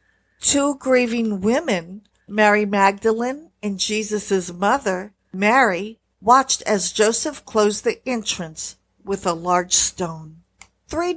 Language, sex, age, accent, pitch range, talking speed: English, female, 50-69, American, 185-255 Hz, 105 wpm